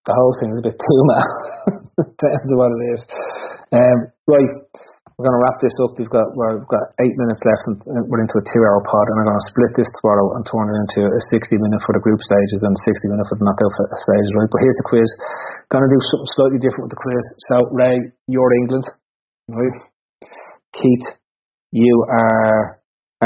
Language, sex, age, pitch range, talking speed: English, male, 30-49, 110-125 Hz, 215 wpm